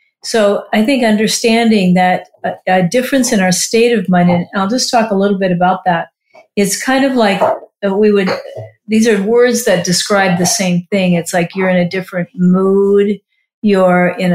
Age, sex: 50-69, female